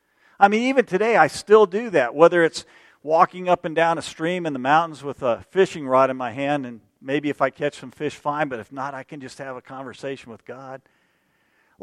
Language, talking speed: English, 235 wpm